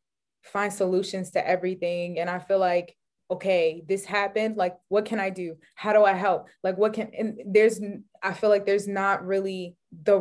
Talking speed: 190 wpm